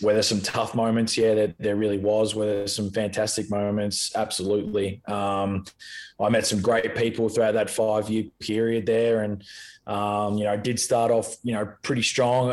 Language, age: English, 20-39